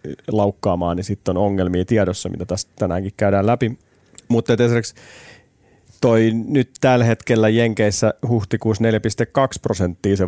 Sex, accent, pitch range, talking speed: male, native, 100-120 Hz, 130 wpm